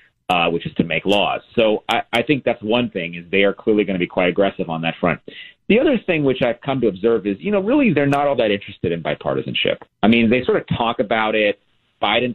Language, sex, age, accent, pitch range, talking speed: English, male, 40-59, American, 90-115 Hz, 260 wpm